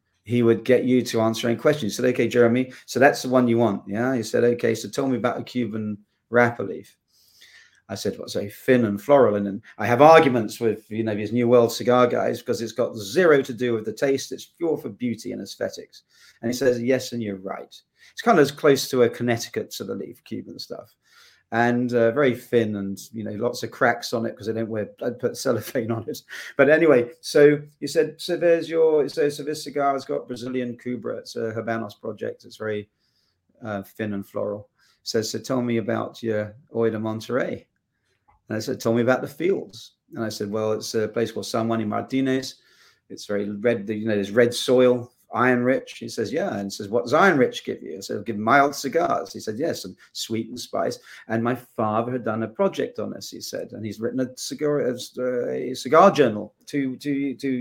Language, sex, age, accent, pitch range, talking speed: English, male, 40-59, British, 110-125 Hz, 230 wpm